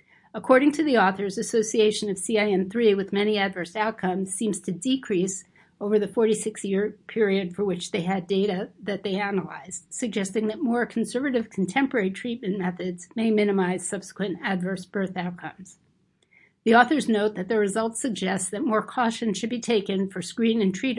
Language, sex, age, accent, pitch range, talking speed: English, female, 50-69, American, 185-220 Hz, 155 wpm